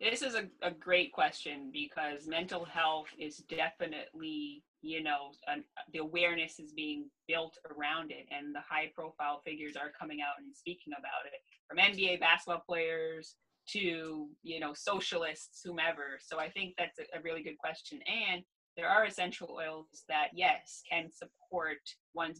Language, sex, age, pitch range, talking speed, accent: English, female, 20-39, 155-190 Hz, 160 wpm, American